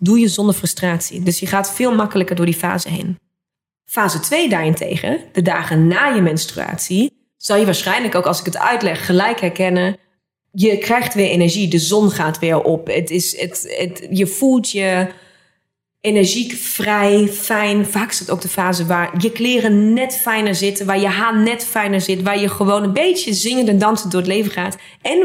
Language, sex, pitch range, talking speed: Dutch, female, 180-220 Hz, 190 wpm